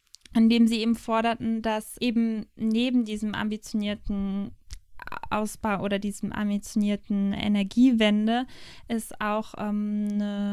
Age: 20-39